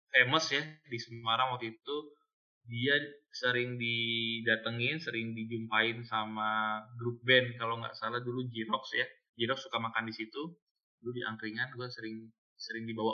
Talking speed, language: 145 wpm, Indonesian